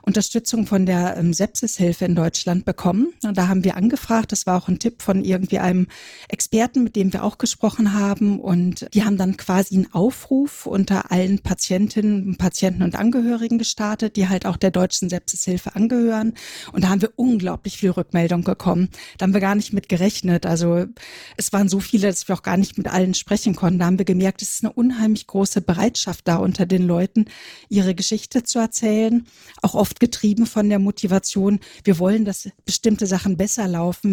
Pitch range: 185-215 Hz